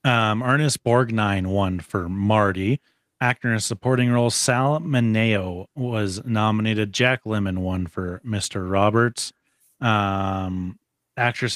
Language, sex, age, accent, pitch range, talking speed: English, male, 30-49, American, 100-125 Hz, 120 wpm